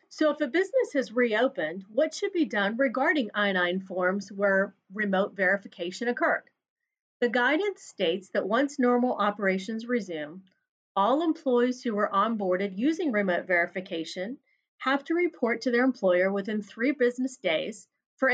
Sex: female